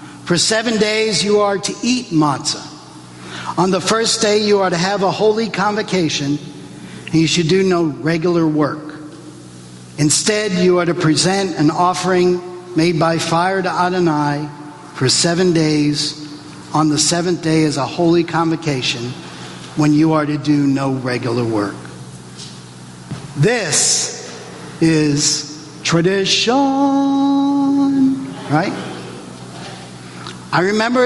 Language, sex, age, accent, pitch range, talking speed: English, male, 50-69, American, 140-190 Hz, 120 wpm